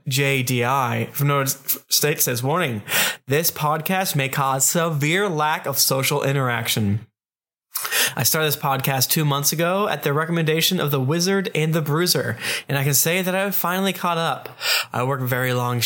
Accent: American